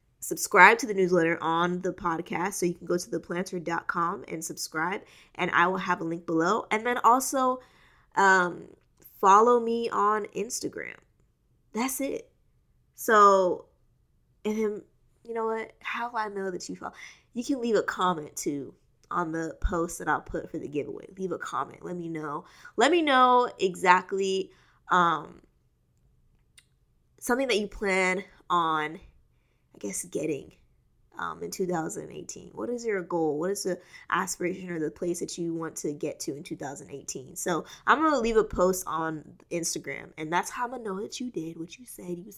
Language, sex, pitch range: English, female, 175-225 Hz